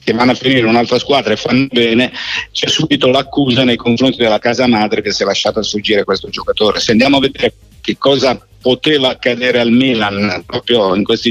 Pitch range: 115-140 Hz